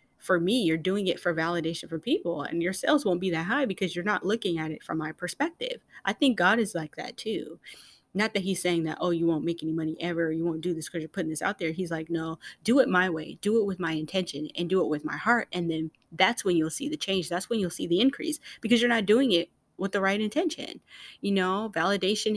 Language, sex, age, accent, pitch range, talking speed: English, female, 20-39, American, 170-210 Hz, 265 wpm